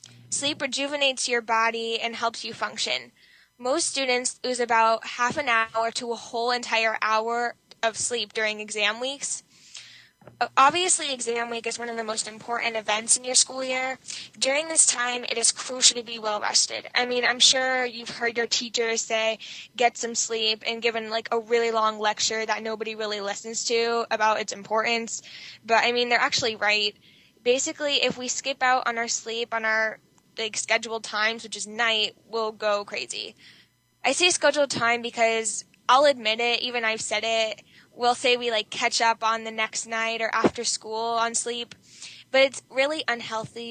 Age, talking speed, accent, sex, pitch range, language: 10-29, 180 wpm, American, female, 225-245 Hz, English